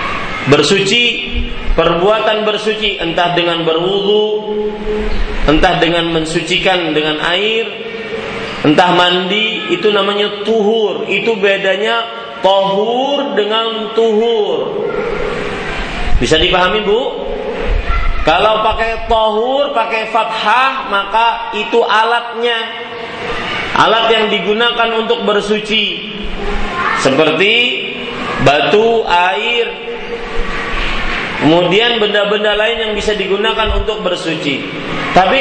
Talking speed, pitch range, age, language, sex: 85 wpm, 200-240 Hz, 30-49, Malay, male